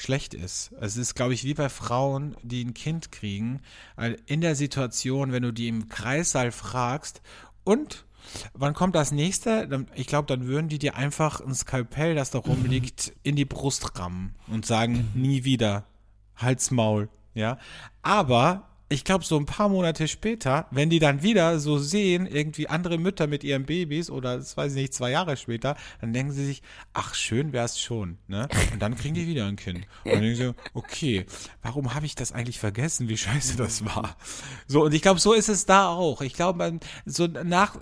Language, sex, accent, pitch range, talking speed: German, male, German, 120-160 Hz, 195 wpm